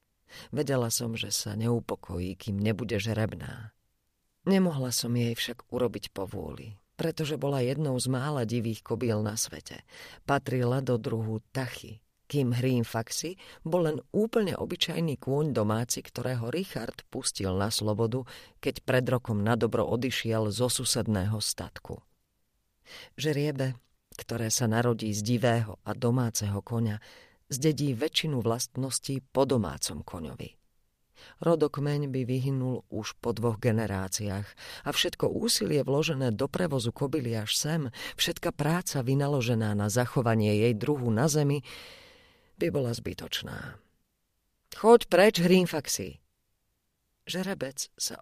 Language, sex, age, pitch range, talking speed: Slovak, female, 40-59, 110-145 Hz, 120 wpm